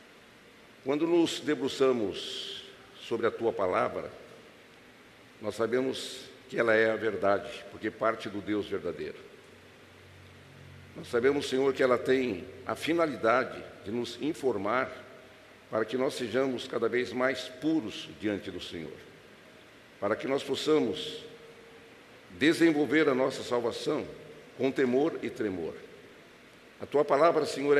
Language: Portuguese